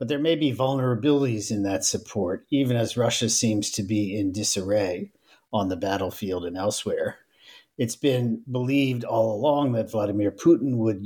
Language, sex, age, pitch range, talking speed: English, male, 50-69, 100-125 Hz, 165 wpm